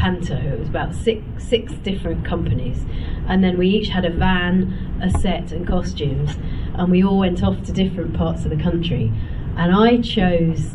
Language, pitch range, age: English, 145-170 Hz, 40-59